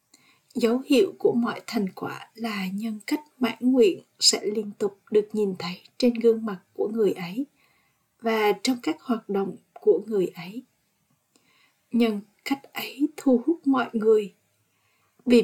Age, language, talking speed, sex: 20-39, Vietnamese, 150 wpm, female